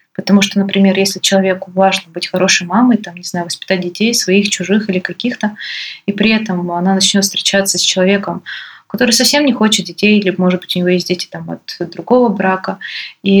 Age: 20-39